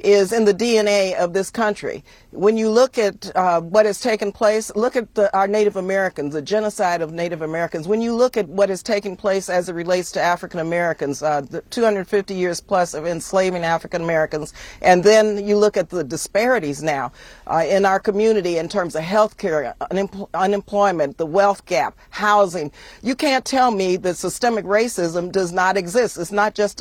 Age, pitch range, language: 50-69, 180-220 Hz, English